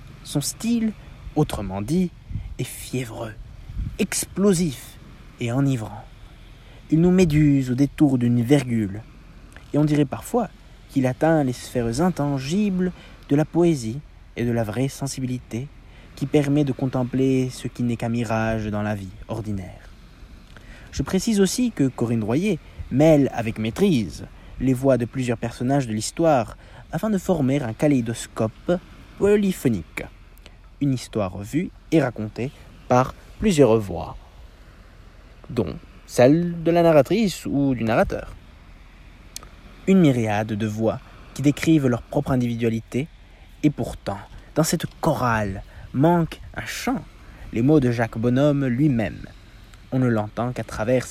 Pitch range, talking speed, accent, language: 110-150 Hz, 130 wpm, French, French